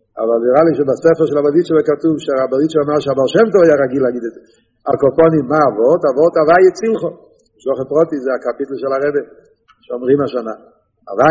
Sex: male